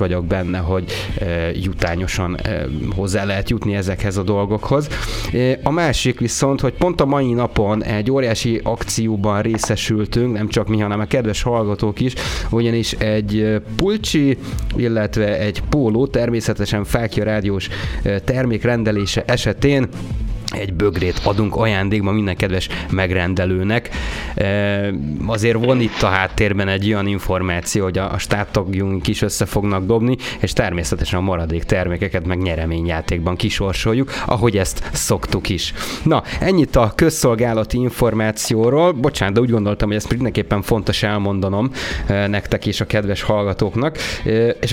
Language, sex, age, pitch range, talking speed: Hungarian, male, 30-49, 100-120 Hz, 125 wpm